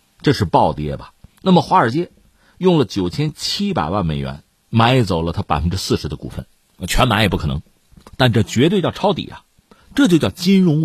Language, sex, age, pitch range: Chinese, male, 50-69, 95-155 Hz